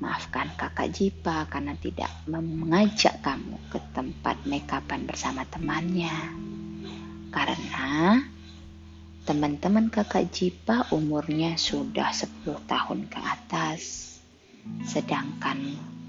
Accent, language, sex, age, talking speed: native, Indonesian, female, 20-39, 90 wpm